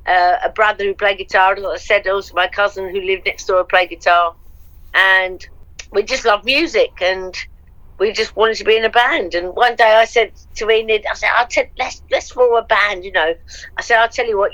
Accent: British